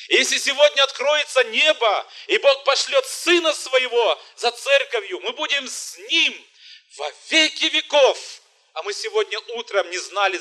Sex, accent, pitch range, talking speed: male, native, 240-320 Hz, 140 wpm